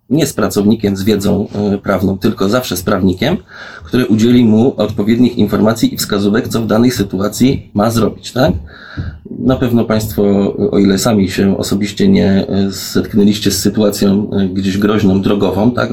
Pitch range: 100-105 Hz